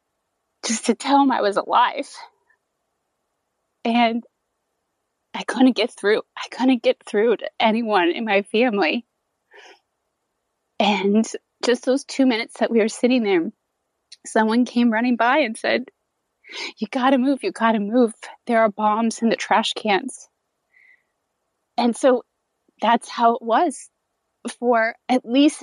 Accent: American